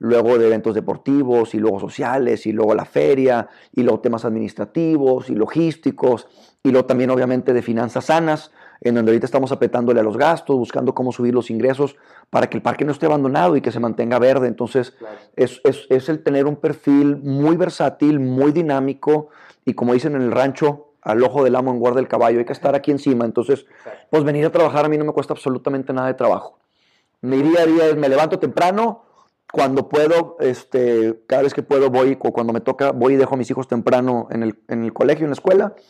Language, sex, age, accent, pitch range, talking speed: Spanish, male, 30-49, Mexican, 120-145 Hz, 210 wpm